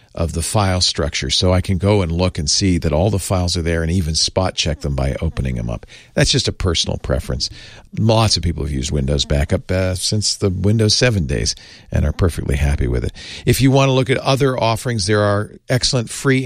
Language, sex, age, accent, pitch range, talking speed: English, male, 50-69, American, 85-110 Hz, 230 wpm